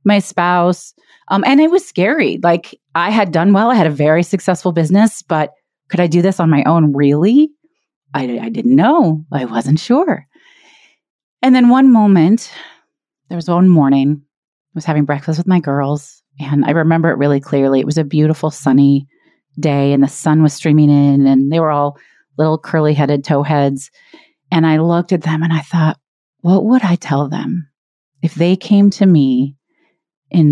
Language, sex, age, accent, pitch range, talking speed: English, female, 30-49, American, 155-205 Hz, 185 wpm